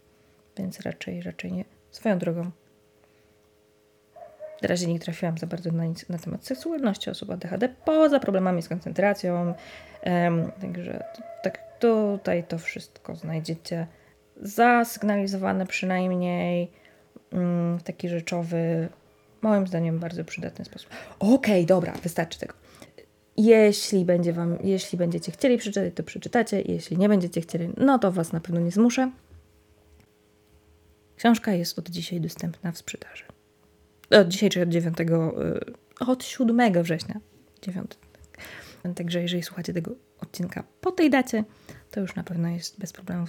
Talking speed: 130 wpm